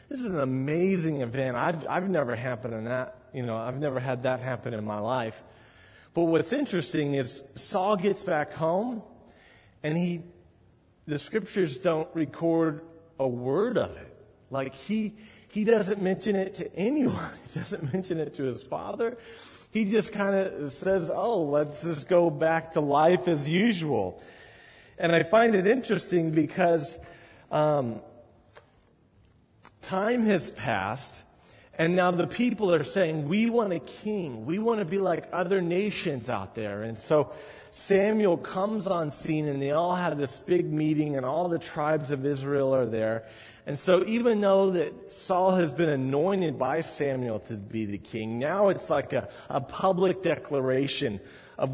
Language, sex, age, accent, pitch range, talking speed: English, male, 30-49, American, 135-190 Hz, 170 wpm